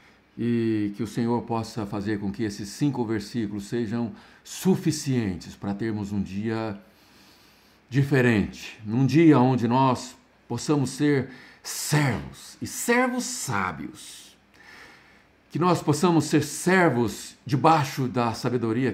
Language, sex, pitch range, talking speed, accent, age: Portuguese, male, 95-125 Hz, 115 wpm, Brazilian, 60-79